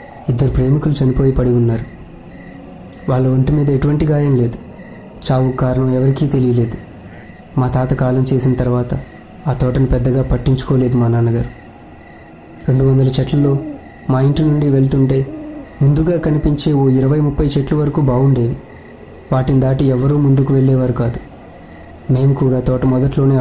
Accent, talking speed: native, 125 wpm